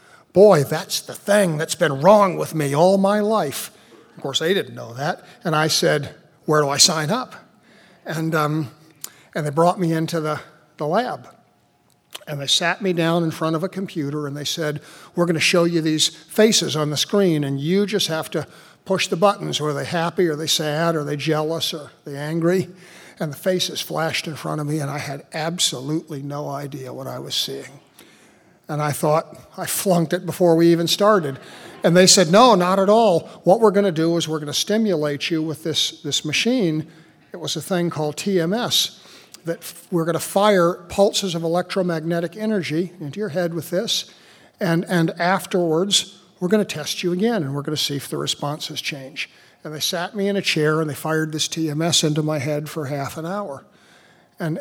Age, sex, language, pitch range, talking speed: 60-79, male, English, 155-185 Hz, 205 wpm